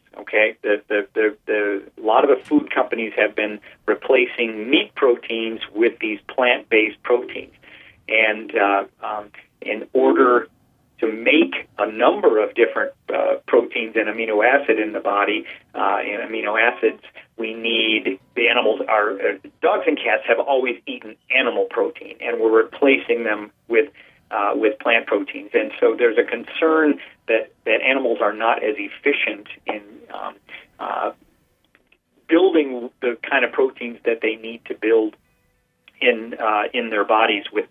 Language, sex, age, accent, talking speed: English, male, 40-59, American, 155 wpm